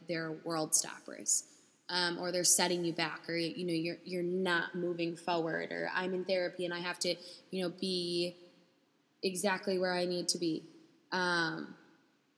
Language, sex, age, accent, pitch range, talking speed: English, female, 10-29, American, 170-190 Hz, 170 wpm